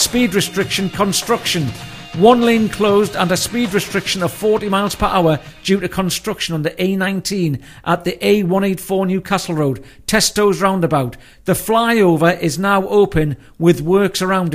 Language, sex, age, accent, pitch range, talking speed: English, male, 50-69, British, 175-205 Hz, 150 wpm